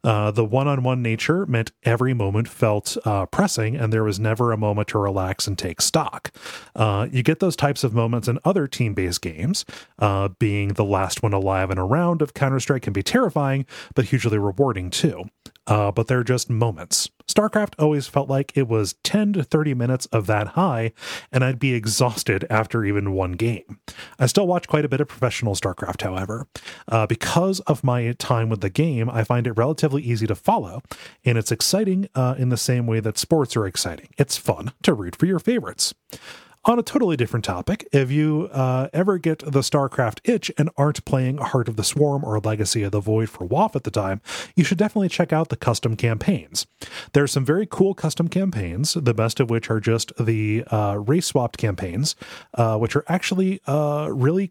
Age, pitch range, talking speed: 30-49, 110-150 Hz, 200 wpm